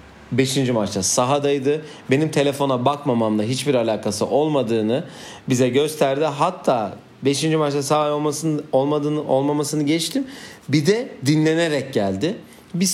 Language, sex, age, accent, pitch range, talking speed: Turkish, male, 40-59, native, 110-150 Hz, 105 wpm